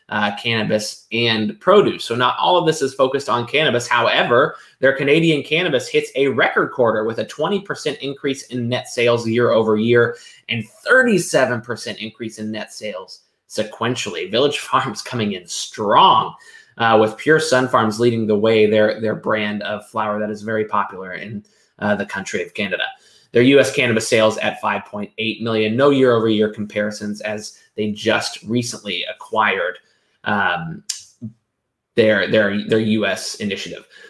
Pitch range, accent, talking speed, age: 110-140 Hz, American, 155 wpm, 20-39